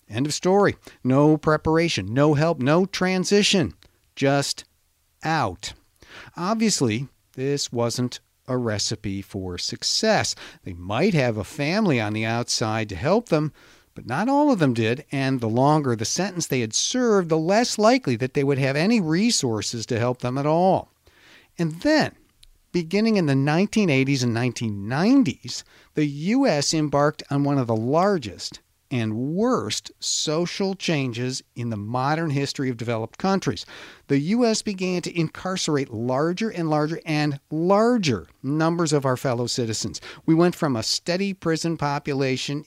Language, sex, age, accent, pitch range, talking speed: English, male, 50-69, American, 125-180 Hz, 150 wpm